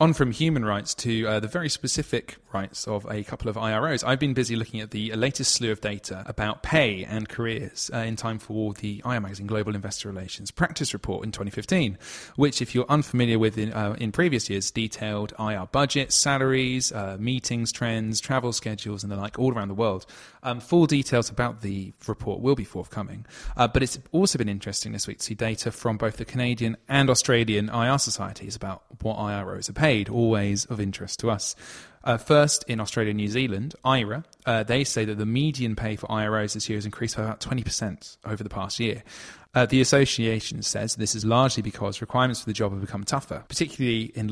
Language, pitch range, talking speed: English, 105-130 Hz, 205 wpm